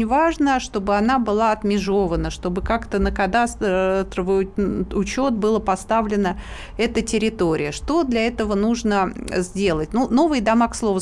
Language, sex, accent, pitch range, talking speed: Russian, female, native, 185-235 Hz, 130 wpm